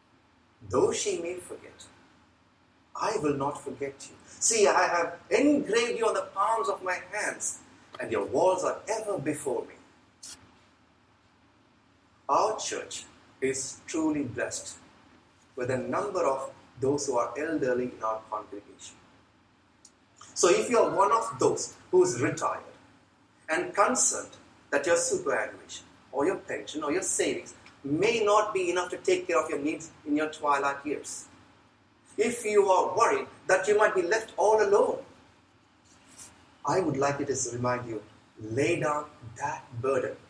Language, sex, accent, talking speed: English, male, Indian, 150 wpm